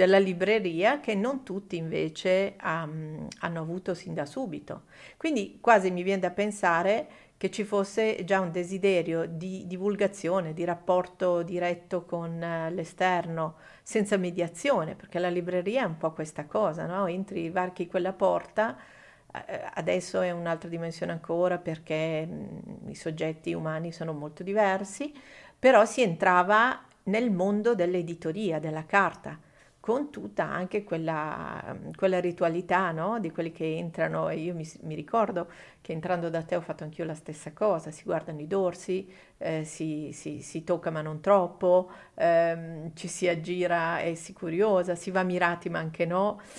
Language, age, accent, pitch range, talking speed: Italian, 50-69, native, 165-195 Hz, 150 wpm